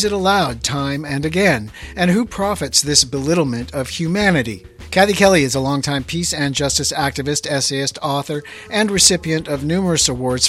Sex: male